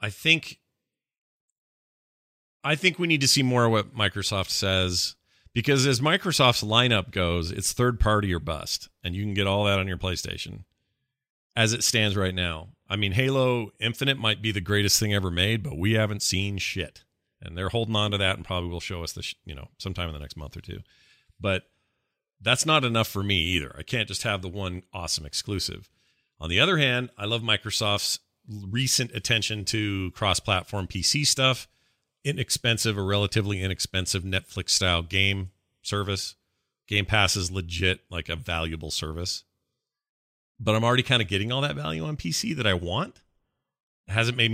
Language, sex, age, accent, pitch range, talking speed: English, male, 40-59, American, 95-120 Hz, 180 wpm